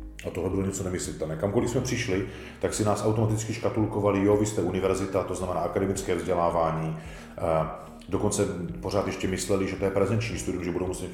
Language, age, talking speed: Czech, 40-59, 180 wpm